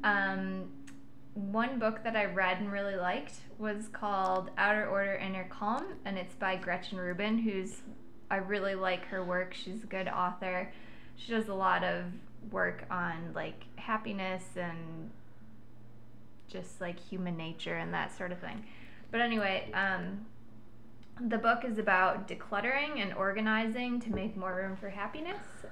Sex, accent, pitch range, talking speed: female, American, 180-220 Hz, 150 wpm